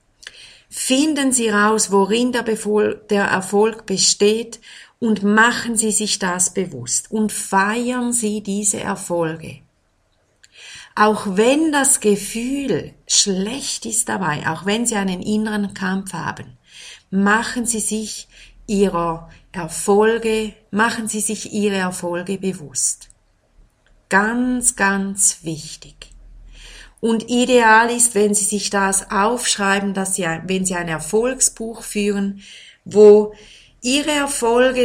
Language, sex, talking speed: German, female, 110 wpm